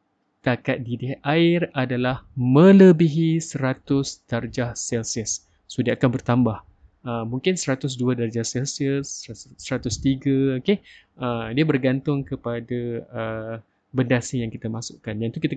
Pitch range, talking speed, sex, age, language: 120-155 Hz, 125 wpm, male, 20-39, Malay